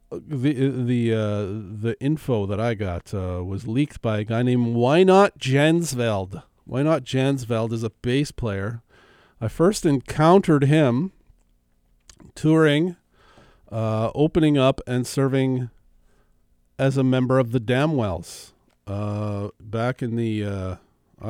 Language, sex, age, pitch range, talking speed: English, male, 50-69, 105-135 Hz, 130 wpm